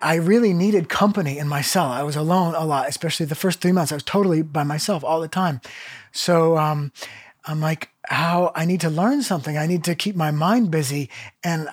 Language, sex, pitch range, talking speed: English, male, 155-200 Hz, 220 wpm